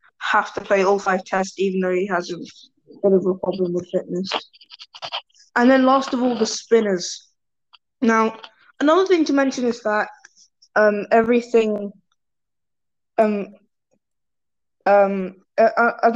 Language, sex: English, female